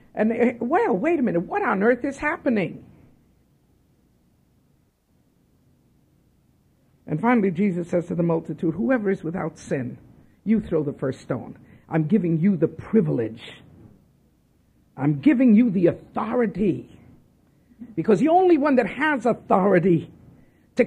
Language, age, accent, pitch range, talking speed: English, 50-69, American, 155-225 Hz, 125 wpm